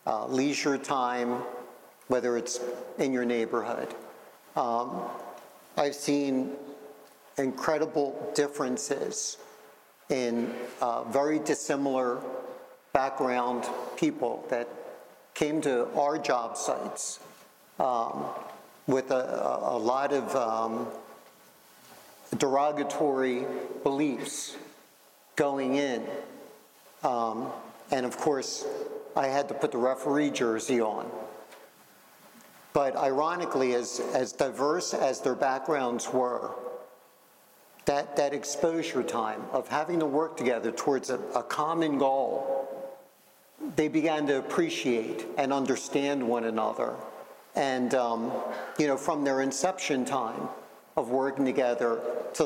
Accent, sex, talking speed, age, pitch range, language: American, male, 105 wpm, 50-69, 125-150 Hz, English